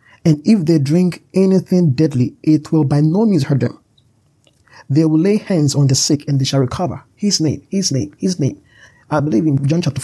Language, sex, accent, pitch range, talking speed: English, male, Nigerian, 125-155 Hz, 210 wpm